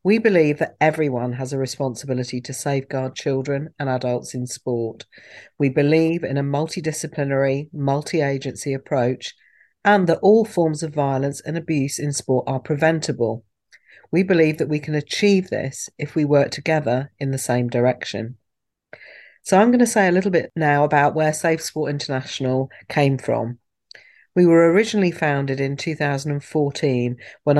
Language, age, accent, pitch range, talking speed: English, 50-69, British, 130-155 Hz, 155 wpm